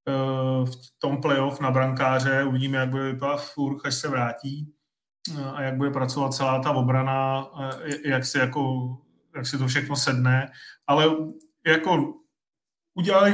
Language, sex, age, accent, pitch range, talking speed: Czech, male, 30-49, native, 130-145 Hz, 140 wpm